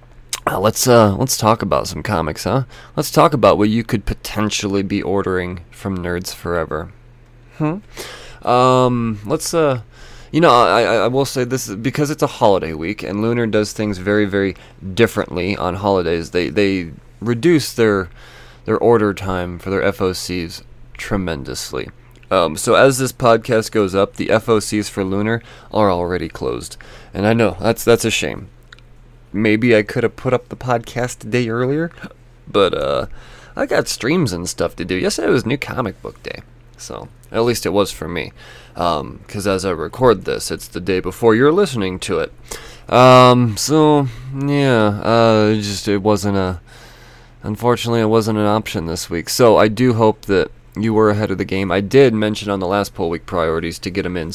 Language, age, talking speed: English, 20-39, 180 wpm